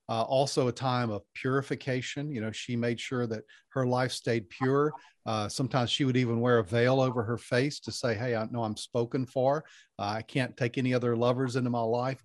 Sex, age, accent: male, 40-59, American